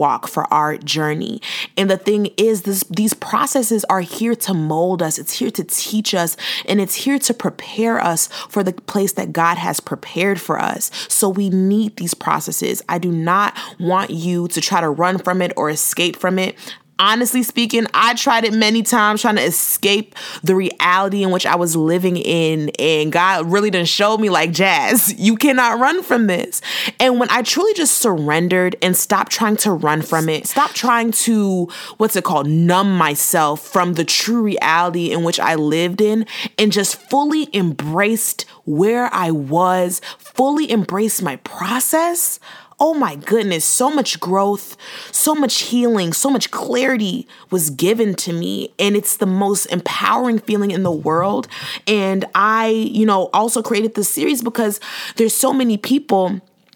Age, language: 20-39, English